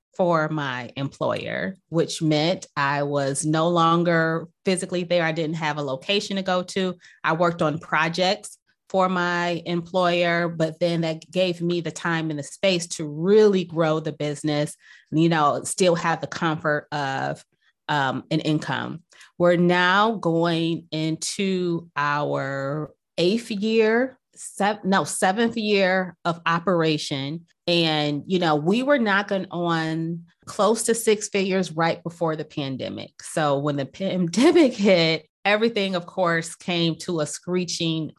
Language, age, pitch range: English, 30-49, 155-185 Hz